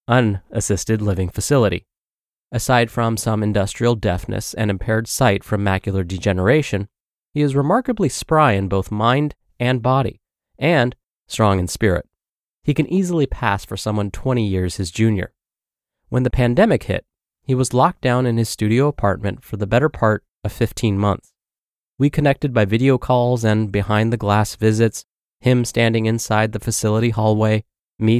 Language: English